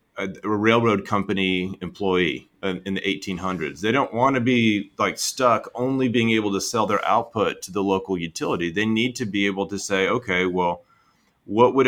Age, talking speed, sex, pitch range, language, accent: 30-49, 180 wpm, male, 95-115 Hz, English, American